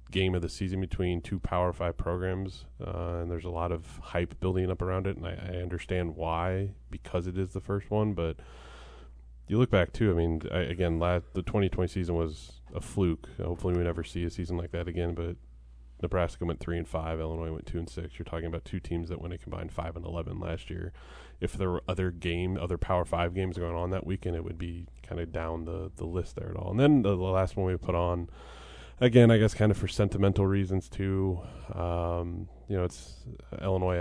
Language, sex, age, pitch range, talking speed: English, male, 20-39, 85-95 Hz, 225 wpm